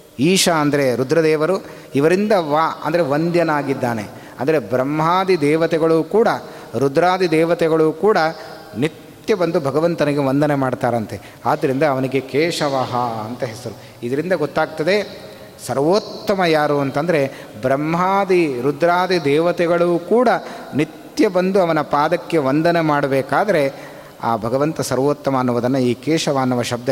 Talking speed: 105 wpm